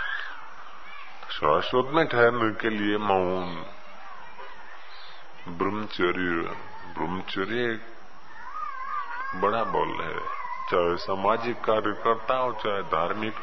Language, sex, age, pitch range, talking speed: Hindi, female, 20-39, 105-160 Hz, 80 wpm